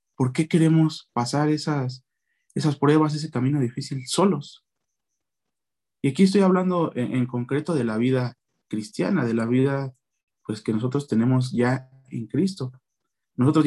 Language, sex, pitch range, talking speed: Spanish, male, 125-160 Hz, 140 wpm